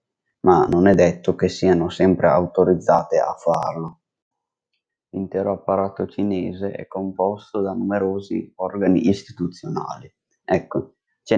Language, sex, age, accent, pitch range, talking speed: Italian, male, 20-39, native, 90-100 Hz, 110 wpm